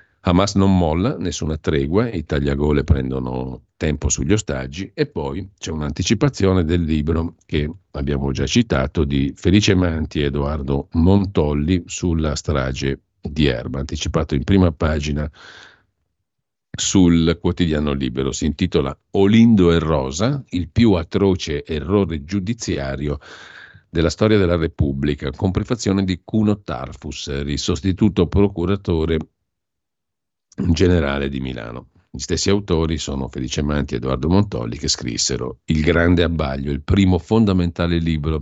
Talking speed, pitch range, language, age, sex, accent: 125 wpm, 75-95 Hz, Italian, 50-69, male, native